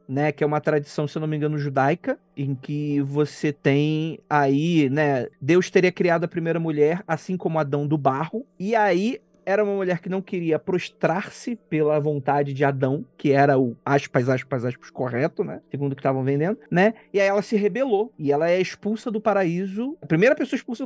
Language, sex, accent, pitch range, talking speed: Portuguese, male, Brazilian, 155-215 Hz, 200 wpm